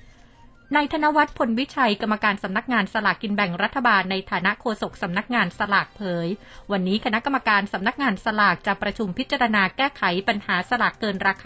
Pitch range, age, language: 190-230 Hz, 30-49, Thai